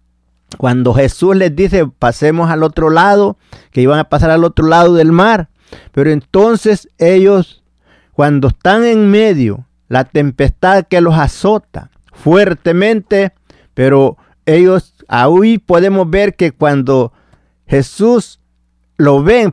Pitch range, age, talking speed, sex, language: 140-190 Hz, 50-69, 125 wpm, male, Spanish